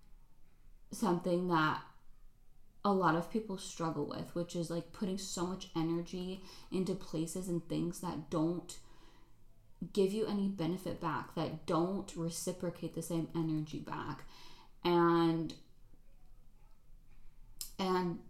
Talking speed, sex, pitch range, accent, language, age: 115 wpm, female, 155-185 Hz, American, English, 20-39